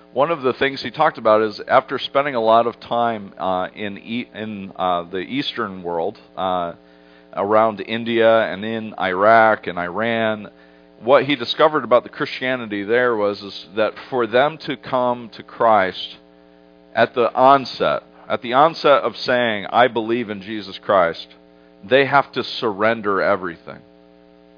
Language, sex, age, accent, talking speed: English, male, 50-69, American, 155 wpm